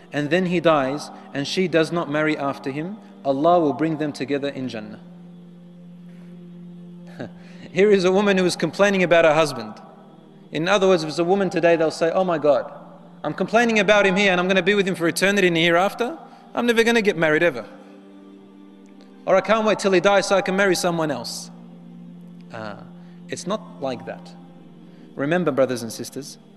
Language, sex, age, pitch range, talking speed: English, male, 30-49, 145-195 Hz, 190 wpm